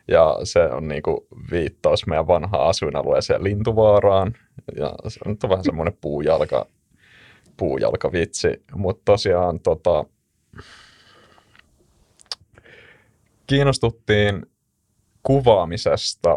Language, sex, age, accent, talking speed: Finnish, male, 30-49, native, 80 wpm